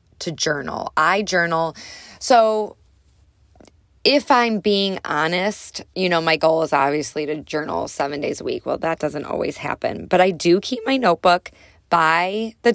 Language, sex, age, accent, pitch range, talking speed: English, female, 20-39, American, 155-185 Hz, 160 wpm